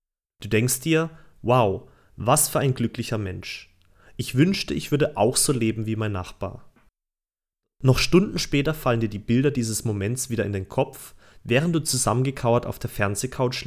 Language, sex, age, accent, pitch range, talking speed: German, male, 30-49, German, 100-135 Hz, 165 wpm